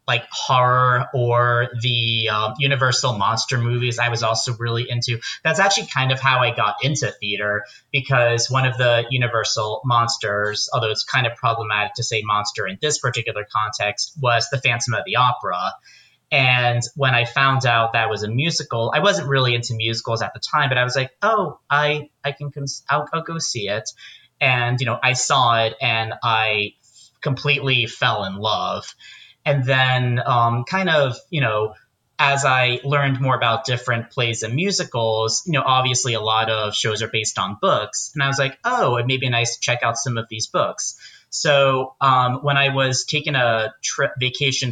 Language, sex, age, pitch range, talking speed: English, male, 30-49, 115-135 Hz, 190 wpm